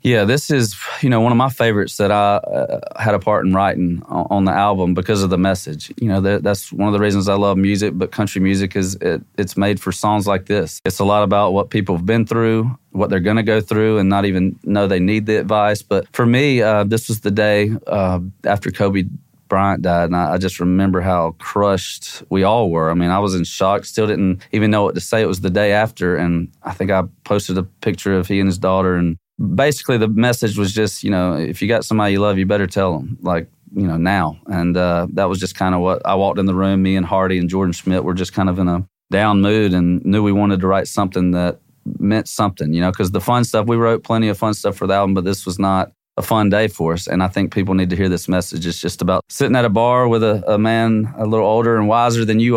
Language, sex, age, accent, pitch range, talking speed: English, male, 30-49, American, 90-105 Hz, 265 wpm